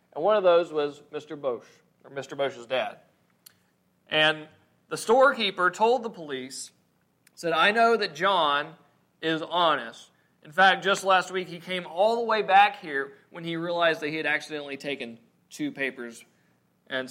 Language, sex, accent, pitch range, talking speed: English, male, American, 150-205 Hz, 165 wpm